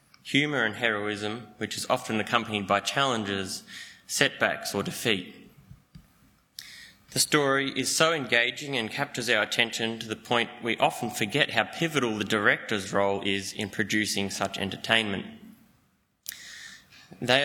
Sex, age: male, 20-39